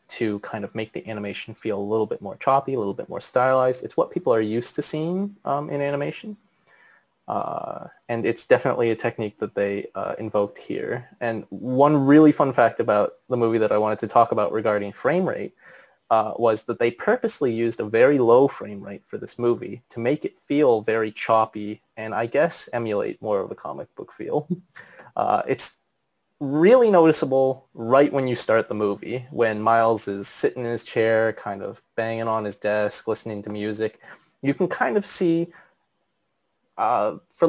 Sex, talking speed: male, 185 wpm